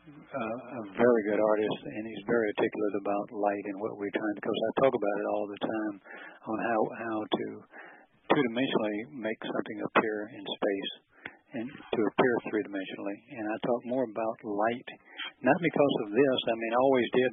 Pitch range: 105-120 Hz